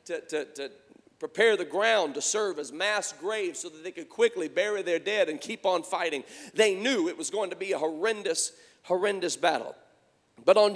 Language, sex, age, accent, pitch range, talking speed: English, male, 40-59, American, 210-285 Hz, 200 wpm